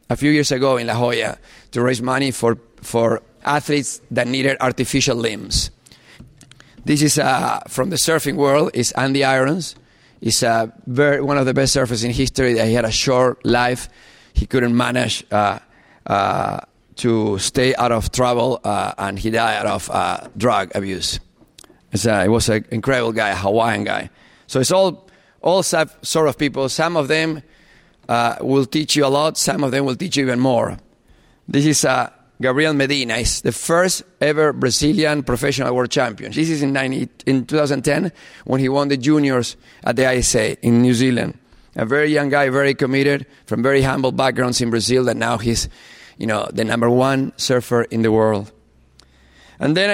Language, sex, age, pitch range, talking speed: English, male, 30-49, 120-145 Hz, 180 wpm